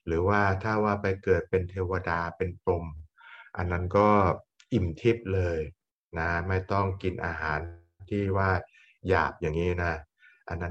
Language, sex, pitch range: Thai, male, 85-100 Hz